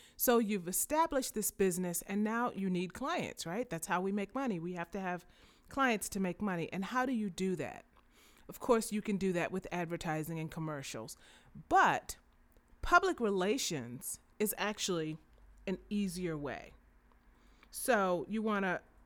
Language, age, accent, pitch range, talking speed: English, 30-49, American, 170-215 Hz, 160 wpm